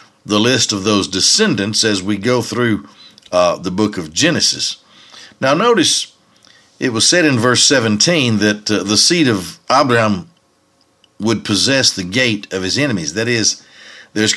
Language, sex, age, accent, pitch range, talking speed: English, male, 60-79, American, 100-125 Hz, 160 wpm